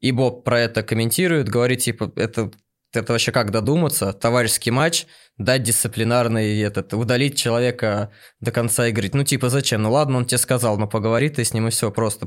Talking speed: 190 wpm